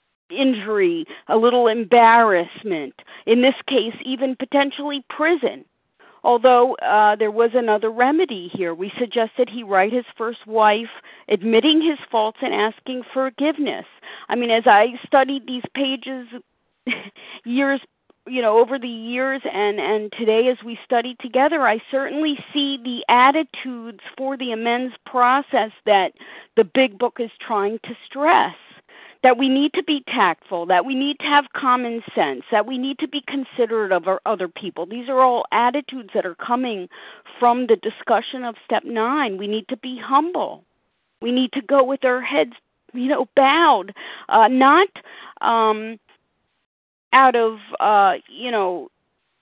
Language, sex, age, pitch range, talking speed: English, female, 40-59, 225-275 Hz, 155 wpm